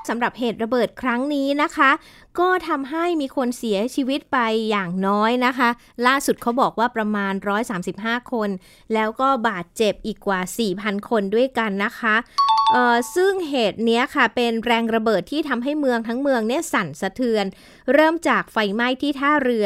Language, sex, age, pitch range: Thai, female, 20-39, 205-270 Hz